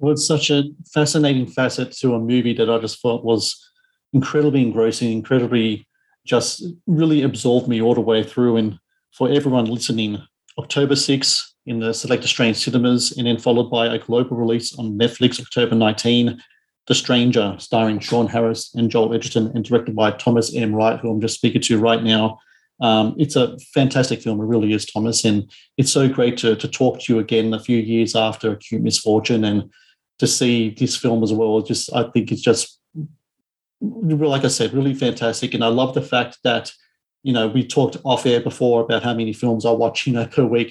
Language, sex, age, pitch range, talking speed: English, male, 40-59, 115-125 Hz, 195 wpm